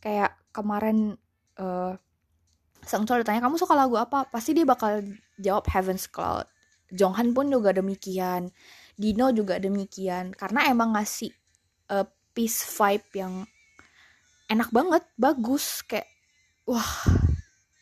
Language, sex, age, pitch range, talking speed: Indonesian, female, 20-39, 185-225 Hz, 120 wpm